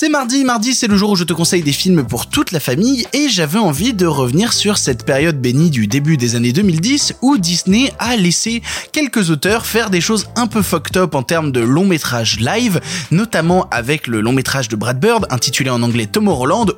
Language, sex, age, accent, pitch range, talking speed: French, male, 20-39, French, 125-190 Hz, 210 wpm